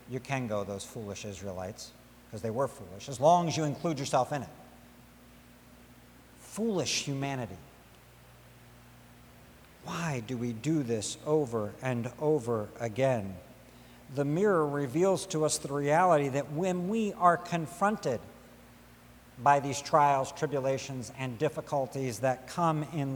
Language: English